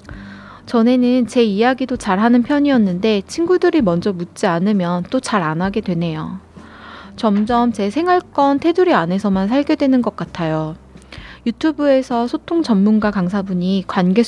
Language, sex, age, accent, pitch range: Korean, female, 20-39, native, 175-250 Hz